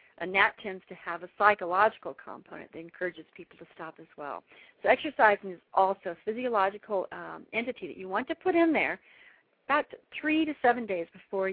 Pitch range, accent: 185-235 Hz, American